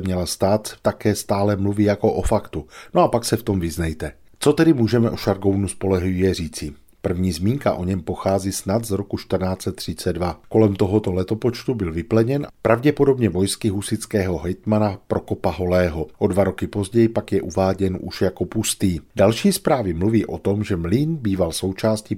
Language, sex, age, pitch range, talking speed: Czech, male, 40-59, 95-115 Hz, 165 wpm